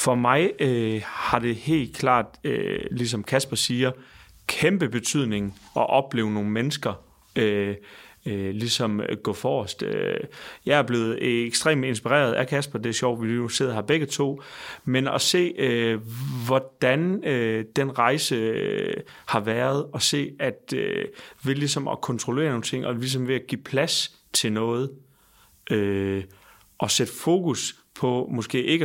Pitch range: 115-135 Hz